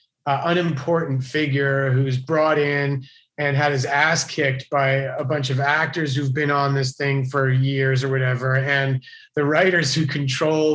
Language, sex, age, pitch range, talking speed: English, male, 30-49, 130-160 Hz, 170 wpm